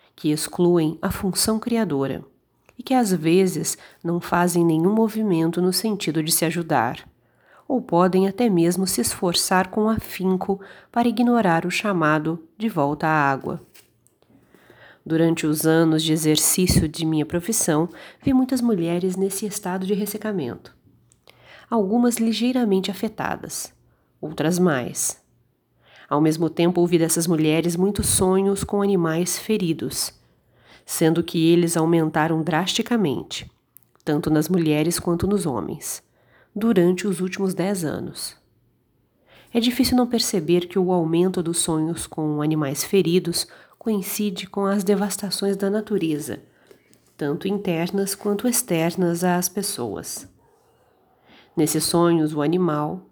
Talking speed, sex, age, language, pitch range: 125 wpm, female, 40-59, Portuguese, 160-200 Hz